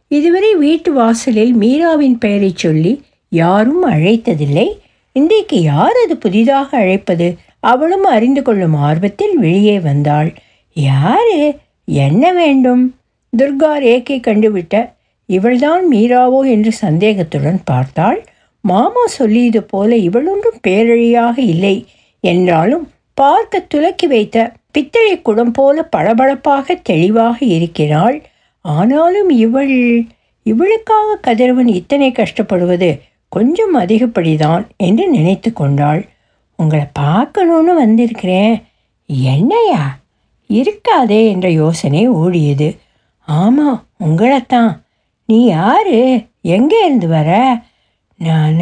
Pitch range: 180-275 Hz